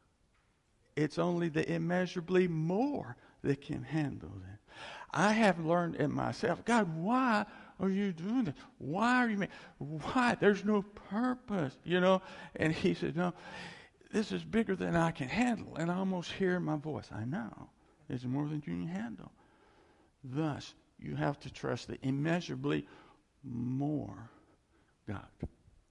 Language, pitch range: English, 130-190 Hz